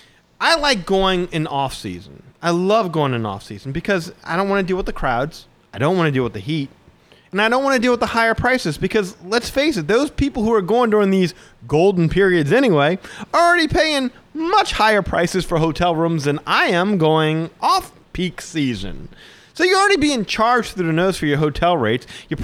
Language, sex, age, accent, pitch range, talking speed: English, male, 30-49, American, 150-215 Hz, 210 wpm